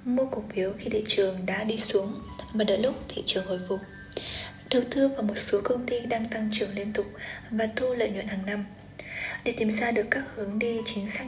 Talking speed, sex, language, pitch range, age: 230 wpm, female, Vietnamese, 205-240 Hz, 10-29